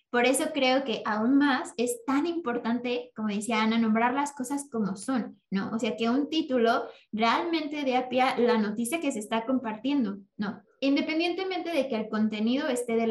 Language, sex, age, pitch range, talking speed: Spanish, female, 20-39, 225-260 Hz, 190 wpm